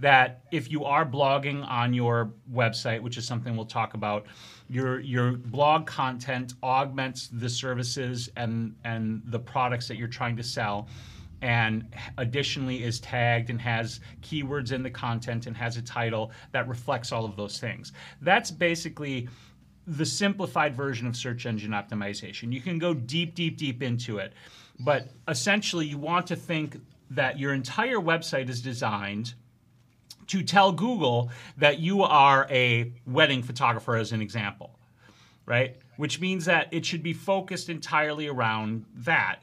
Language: English